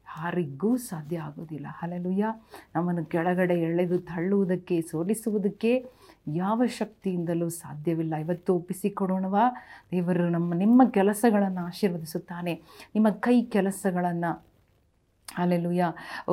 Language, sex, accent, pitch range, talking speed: Kannada, female, native, 175-215 Hz, 85 wpm